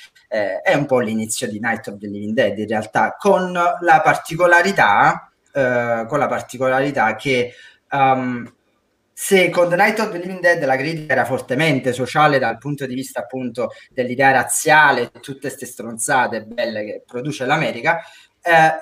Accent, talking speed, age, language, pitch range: native, 165 wpm, 20-39, Italian, 125-175 Hz